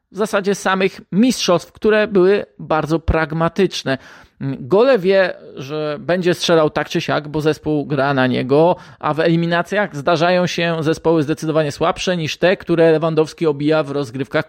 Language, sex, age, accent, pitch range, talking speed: Polish, male, 20-39, native, 150-190 Hz, 150 wpm